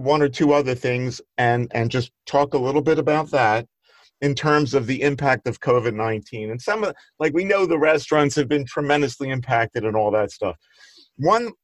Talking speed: 200 wpm